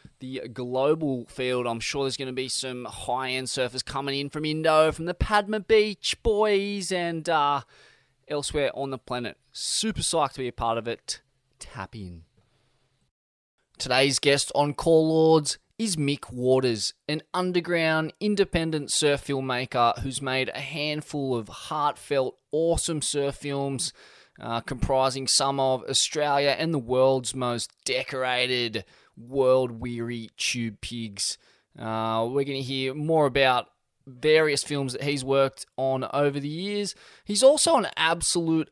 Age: 20-39